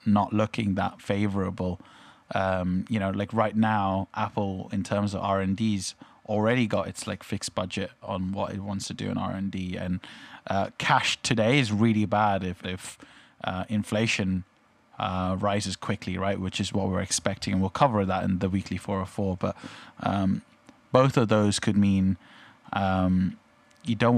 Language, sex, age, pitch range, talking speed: English, male, 20-39, 95-120 Hz, 170 wpm